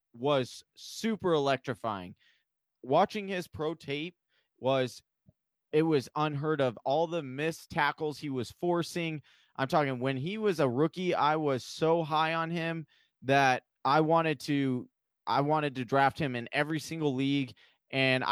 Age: 20-39